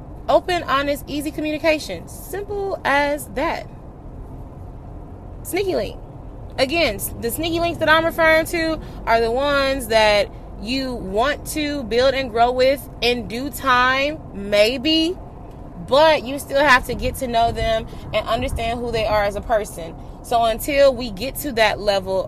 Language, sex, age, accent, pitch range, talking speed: English, female, 20-39, American, 220-275 Hz, 150 wpm